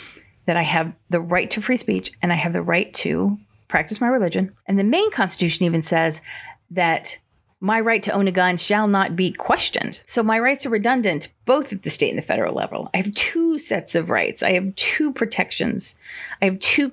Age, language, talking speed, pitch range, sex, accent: 30-49, English, 215 wpm, 165-225 Hz, female, American